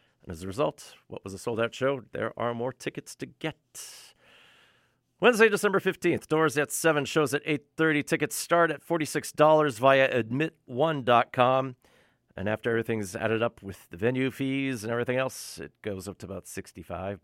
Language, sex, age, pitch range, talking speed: English, male, 40-59, 105-150 Hz, 165 wpm